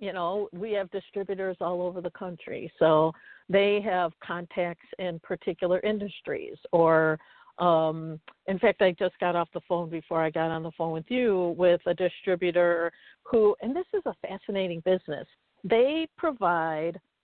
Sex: female